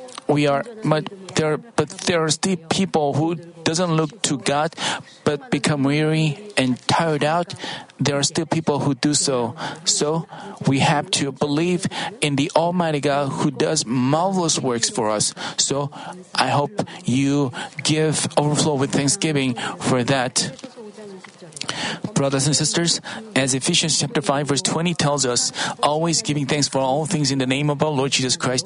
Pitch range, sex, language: 135-165 Hz, male, Korean